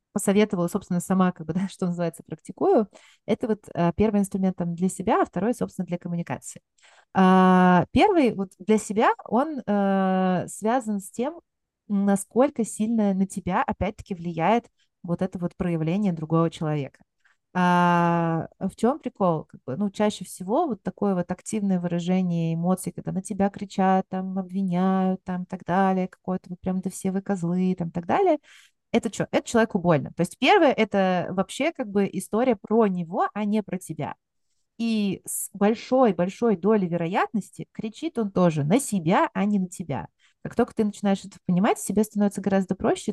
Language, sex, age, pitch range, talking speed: Russian, female, 30-49, 175-210 Hz, 175 wpm